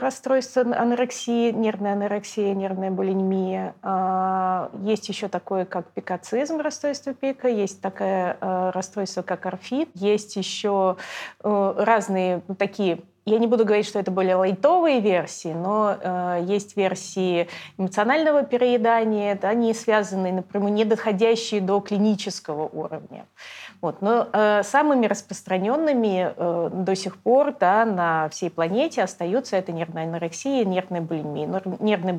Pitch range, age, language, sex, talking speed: 180-225 Hz, 30-49, Russian, female, 115 wpm